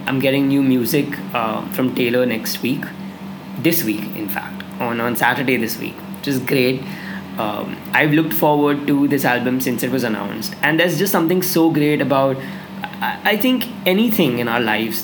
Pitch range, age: 135-170 Hz, 20-39